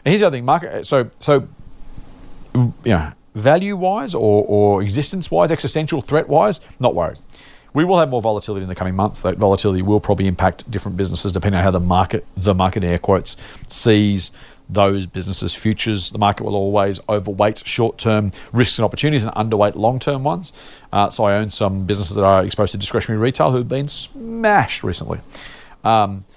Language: English